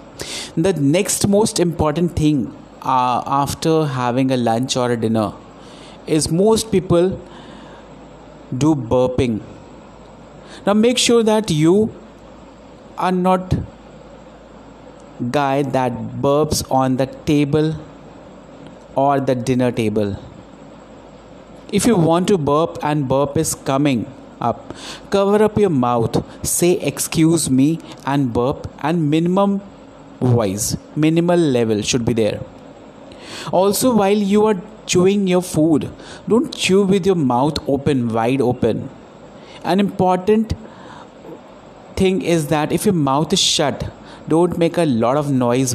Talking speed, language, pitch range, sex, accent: 120 wpm, Hindi, 130-180 Hz, male, native